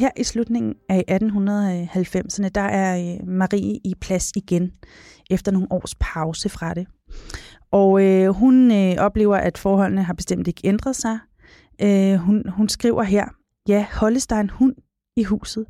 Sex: female